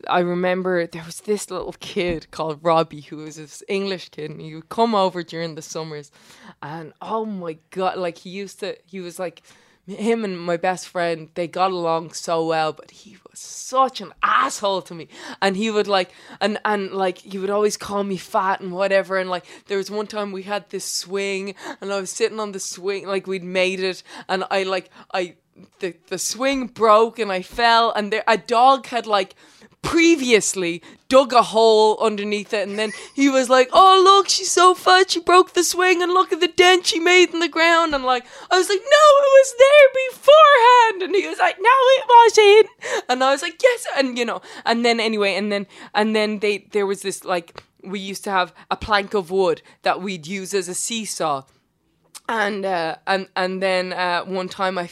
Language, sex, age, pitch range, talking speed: English, female, 20-39, 185-255 Hz, 215 wpm